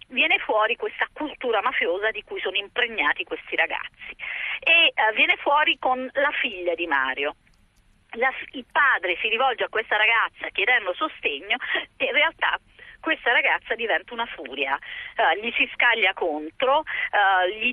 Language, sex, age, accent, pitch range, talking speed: Italian, female, 40-59, native, 210-320 Hz, 145 wpm